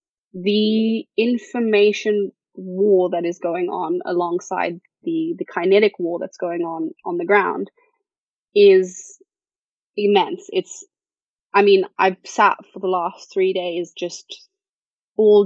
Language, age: English, 20-39